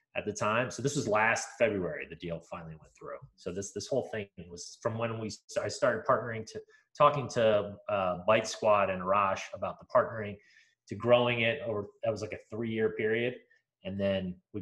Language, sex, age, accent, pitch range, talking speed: English, male, 30-49, American, 95-115 Hz, 210 wpm